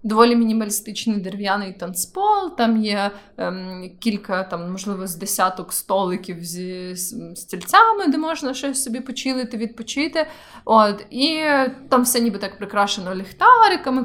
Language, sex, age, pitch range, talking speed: Ukrainian, female, 20-39, 190-240 Hz, 130 wpm